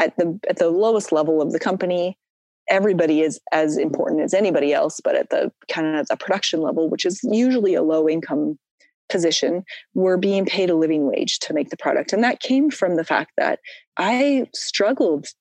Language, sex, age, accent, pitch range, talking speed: English, female, 20-39, American, 155-215 Hz, 195 wpm